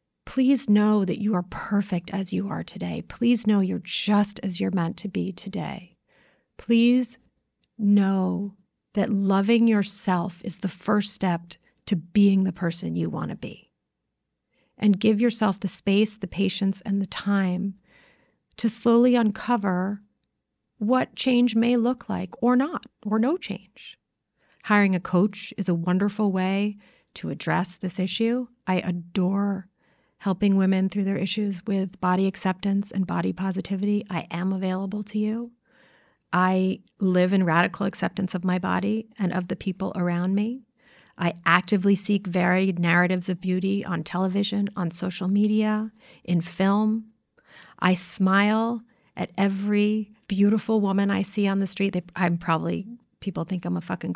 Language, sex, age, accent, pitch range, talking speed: English, female, 30-49, American, 185-210 Hz, 150 wpm